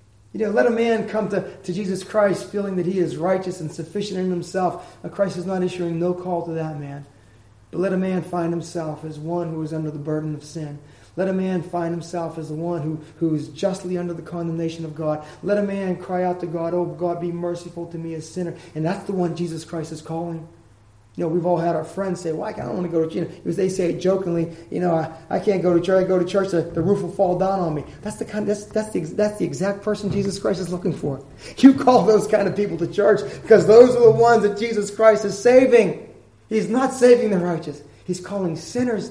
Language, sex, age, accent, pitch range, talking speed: English, male, 30-49, American, 165-205 Hz, 250 wpm